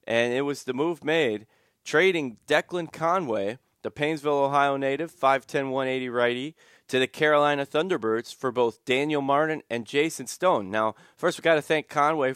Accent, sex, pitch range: American, male, 125-150 Hz